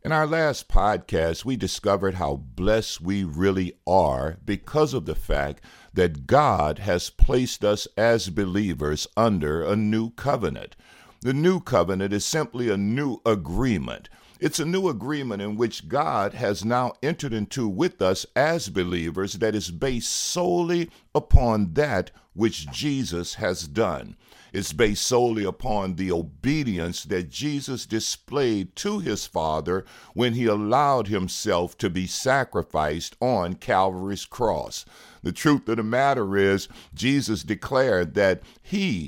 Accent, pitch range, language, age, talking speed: American, 95-130 Hz, English, 60-79, 140 wpm